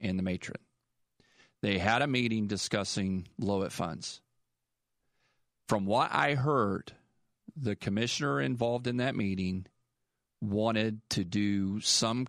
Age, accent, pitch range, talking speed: 40-59, American, 95-125 Hz, 115 wpm